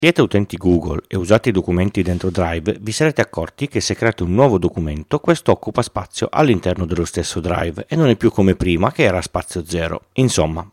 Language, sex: Italian, male